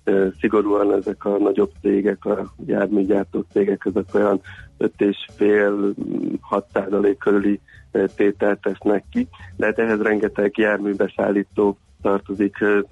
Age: 30-49